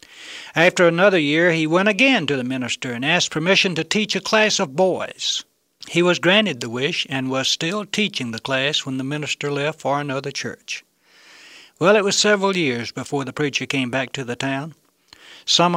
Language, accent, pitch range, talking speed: English, American, 135-175 Hz, 190 wpm